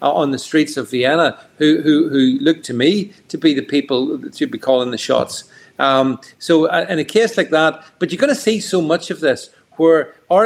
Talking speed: 225 wpm